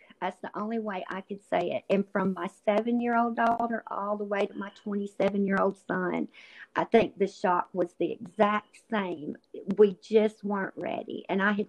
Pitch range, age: 195-230 Hz, 50-69